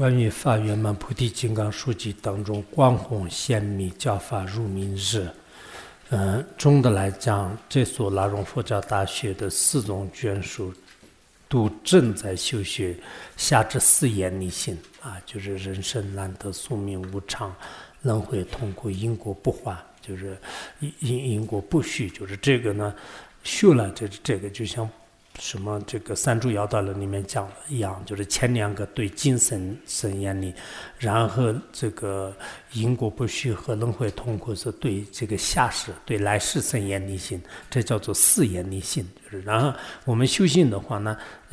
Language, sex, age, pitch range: English, male, 50-69, 100-125 Hz